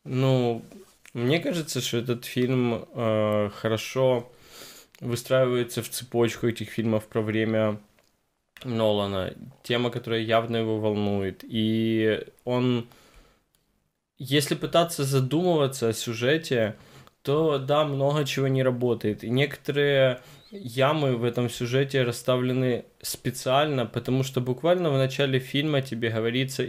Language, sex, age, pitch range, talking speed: Russian, male, 20-39, 115-135 Hz, 110 wpm